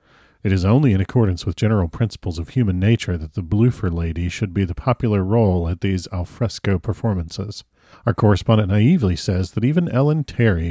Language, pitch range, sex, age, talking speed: English, 90-115 Hz, male, 40-59, 180 wpm